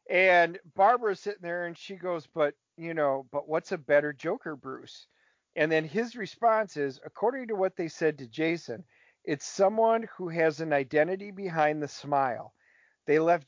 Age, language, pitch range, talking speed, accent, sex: 40-59, English, 155-215 Hz, 175 wpm, American, male